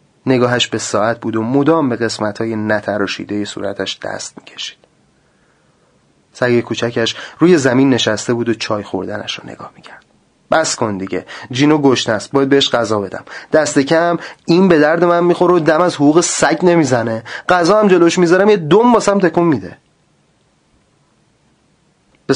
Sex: male